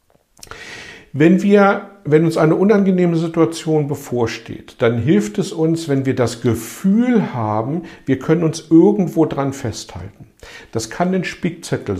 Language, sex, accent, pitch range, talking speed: German, male, German, 115-160 Hz, 135 wpm